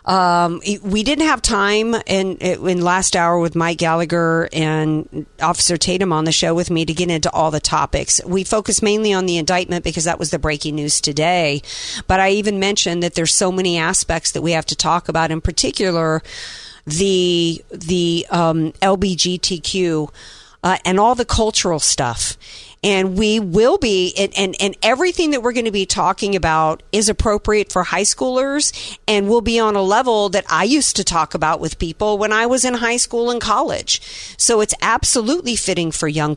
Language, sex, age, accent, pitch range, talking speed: English, female, 50-69, American, 165-205 Hz, 190 wpm